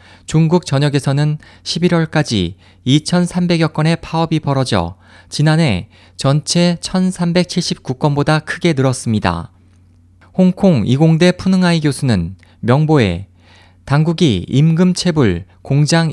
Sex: male